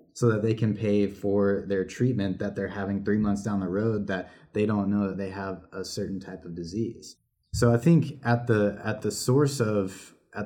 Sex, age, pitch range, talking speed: male, 20-39, 100-115 Hz, 220 wpm